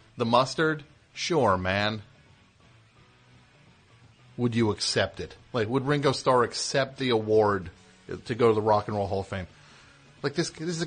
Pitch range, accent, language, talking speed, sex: 105-135 Hz, American, English, 165 wpm, male